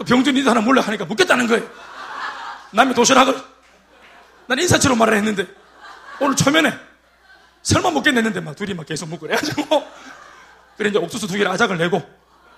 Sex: male